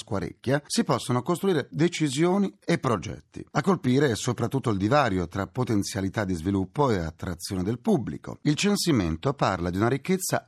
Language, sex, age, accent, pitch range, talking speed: Italian, male, 40-59, native, 100-150 Hz, 150 wpm